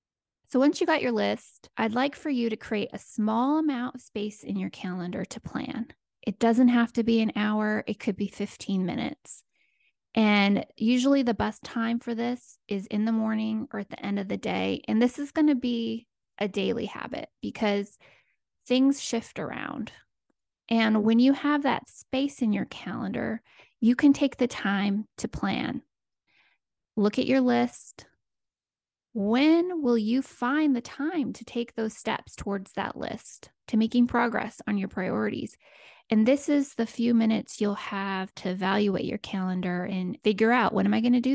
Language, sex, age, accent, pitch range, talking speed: English, female, 20-39, American, 205-250 Hz, 180 wpm